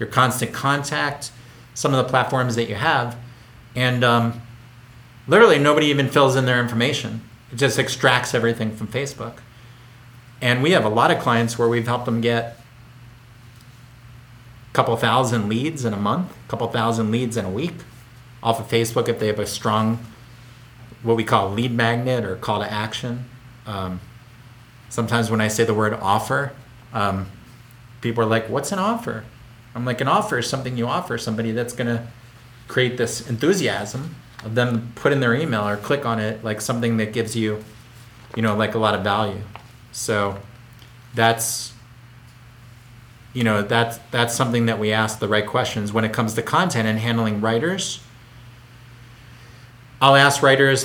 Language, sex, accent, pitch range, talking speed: English, male, American, 115-125 Hz, 170 wpm